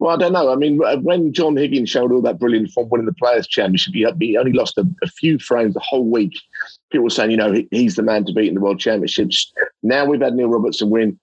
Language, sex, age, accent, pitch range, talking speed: English, male, 50-69, British, 115-175 Hz, 250 wpm